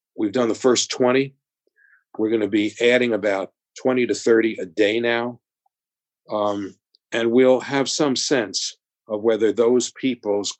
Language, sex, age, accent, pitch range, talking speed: English, male, 50-69, American, 105-130 Hz, 145 wpm